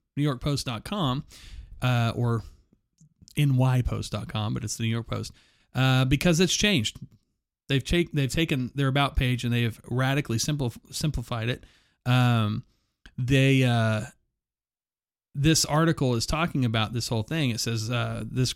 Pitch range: 115-135 Hz